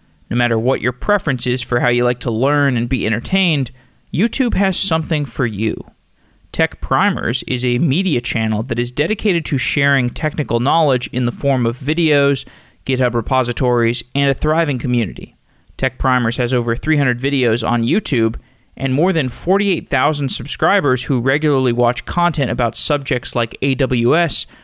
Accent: American